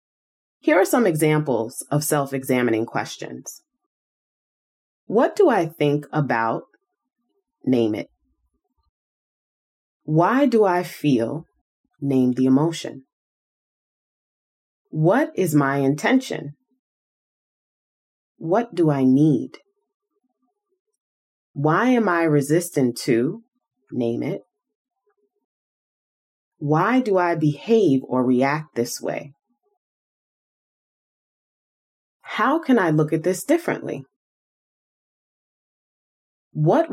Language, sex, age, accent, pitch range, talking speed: English, female, 30-49, American, 140-230 Hz, 85 wpm